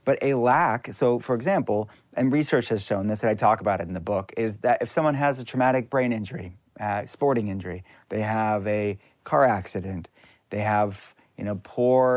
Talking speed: 200 wpm